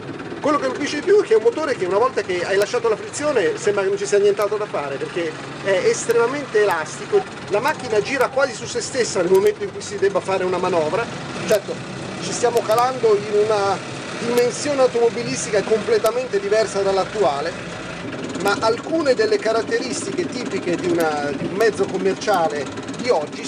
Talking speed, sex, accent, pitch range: 180 wpm, male, native, 175-240 Hz